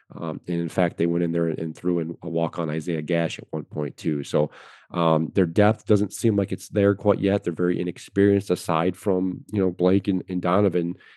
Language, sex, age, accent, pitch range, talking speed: English, male, 40-59, American, 90-105 Hz, 220 wpm